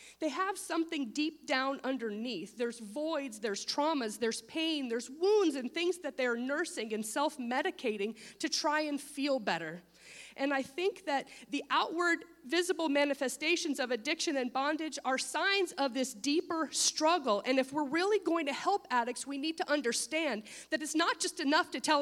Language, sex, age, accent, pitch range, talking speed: English, female, 30-49, American, 240-335 Hz, 170 wpm